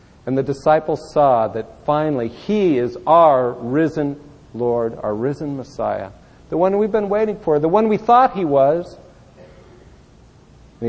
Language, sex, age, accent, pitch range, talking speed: English, male, 50-69, American, 125-175 Hz, 150 wpm